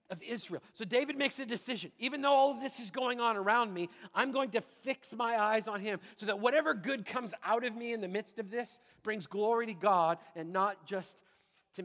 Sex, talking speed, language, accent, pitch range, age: male, 235 wpm, English, American, 170-215 Hz, 40-59